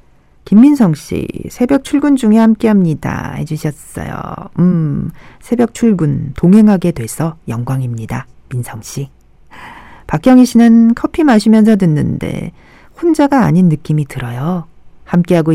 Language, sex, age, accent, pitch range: Korean, female, 40-59, native, 150-225 Hz